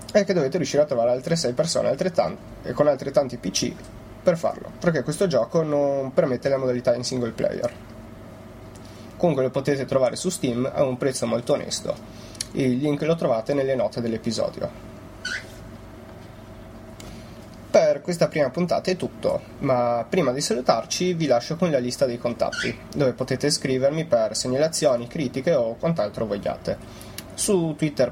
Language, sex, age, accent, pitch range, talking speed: Italian, male, 20-39, native, 110-150 Hz, 150 wpm